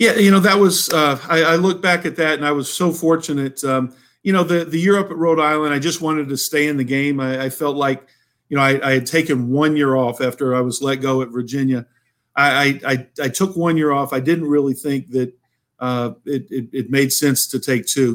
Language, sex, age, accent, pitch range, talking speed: English, male, 50-69, American, 125-145 Hz, 260 wpm